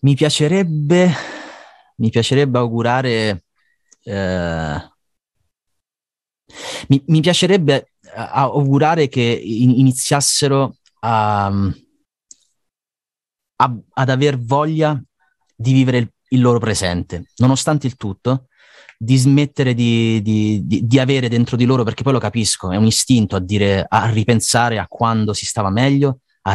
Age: 30-49